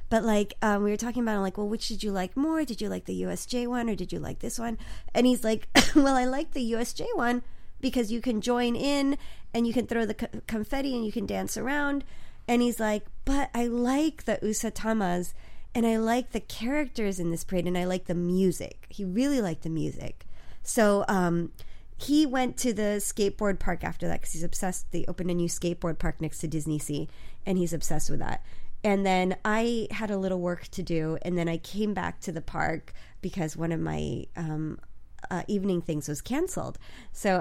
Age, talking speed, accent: 30-49, 215 wpm, American